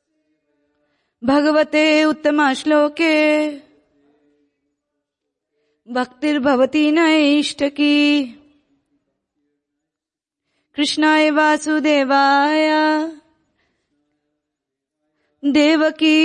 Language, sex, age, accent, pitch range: English, female, 30-49, Indian, 230-290 Hz